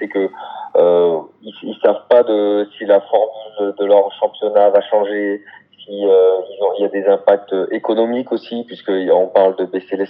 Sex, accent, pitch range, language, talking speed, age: male, French, 95-120 Hz, French, 185 wpm, 30-49